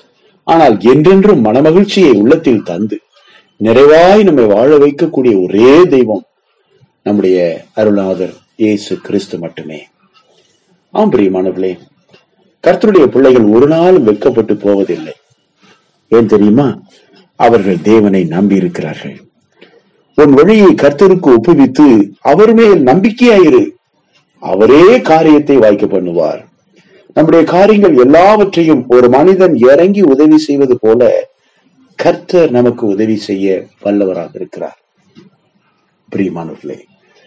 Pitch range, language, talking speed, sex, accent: 100-160 Hz, Tamil, 85 wpm, male, native